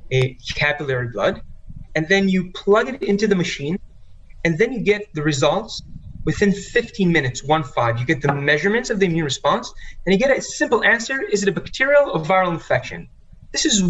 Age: 30-49